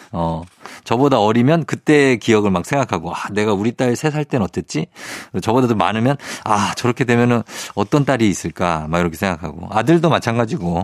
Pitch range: 100-145 Hz